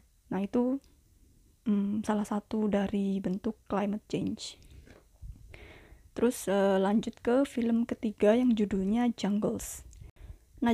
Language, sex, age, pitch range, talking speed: Indonesian, female, 20-39, 210-235 Hz, 105 wpm